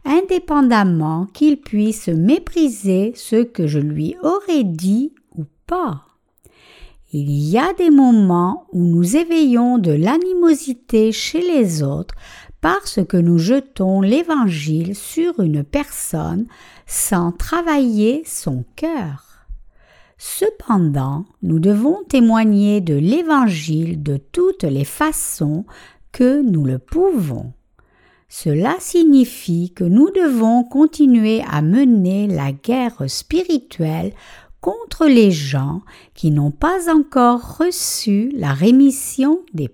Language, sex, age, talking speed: French, female, 60-79, 110 wpm